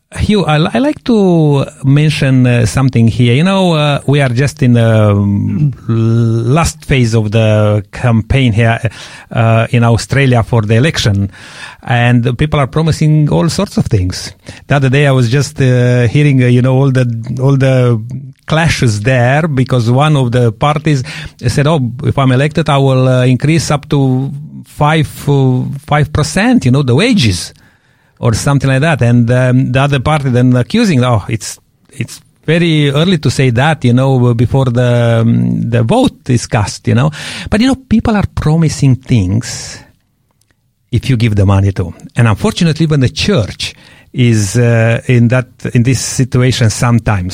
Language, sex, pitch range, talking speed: English, male, 115-145 Hz, 170 wpm